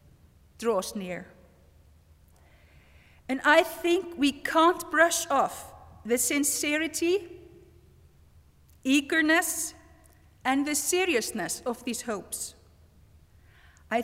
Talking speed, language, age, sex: 80 wpm, English, 50-69, female